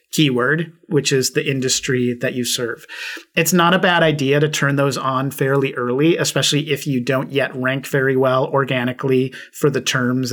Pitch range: 135-160 Hz